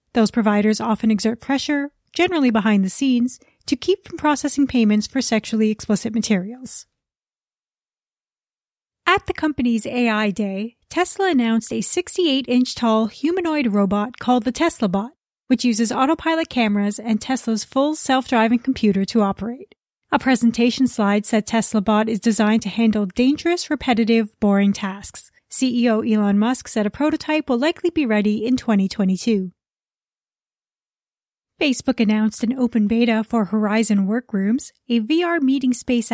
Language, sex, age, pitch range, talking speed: English, female, 30-49, 215-265 Hz, 135 wpm